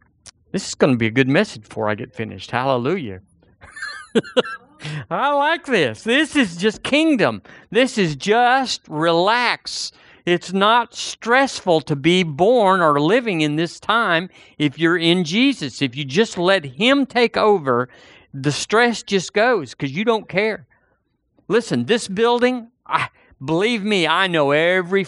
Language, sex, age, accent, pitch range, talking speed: English, male, 50-69, American, 130-190 Hz, 150 wpm